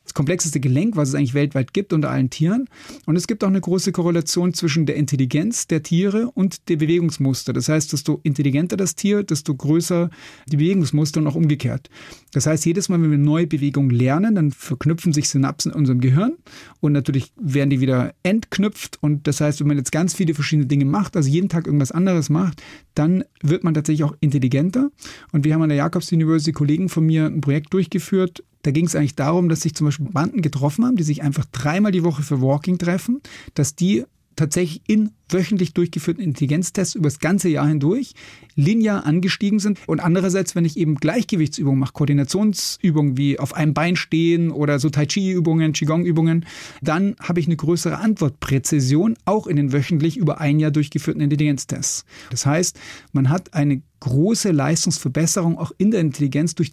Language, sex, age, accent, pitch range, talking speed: German, male, 40-59, German, 145-175 Hz, 185 wpm